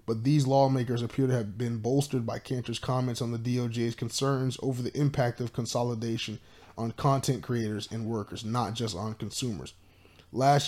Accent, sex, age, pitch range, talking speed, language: American, male, 10-29, 115-140 Hz, 170 wpm, English